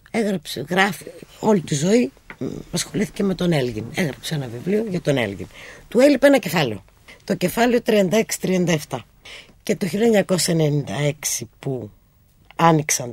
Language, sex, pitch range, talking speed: Greek, female, 135-195 Hz, 125 wpm